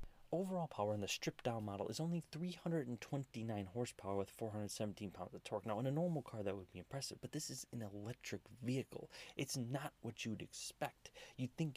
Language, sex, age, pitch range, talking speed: English, male, 30-49, 100-135 Hz, 190 wpm